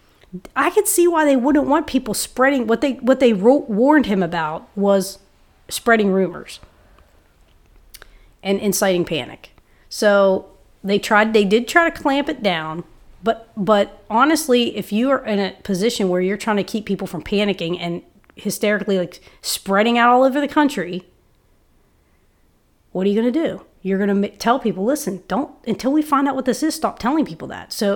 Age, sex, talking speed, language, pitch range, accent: 40-59, female, 175 wpm, English, 180-235 Hz, American